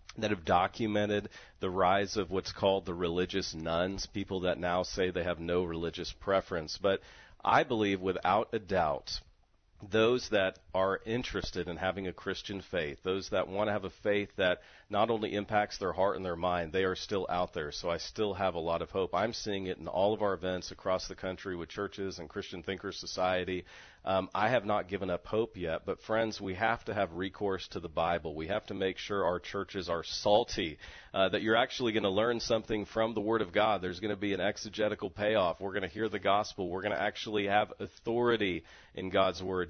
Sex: male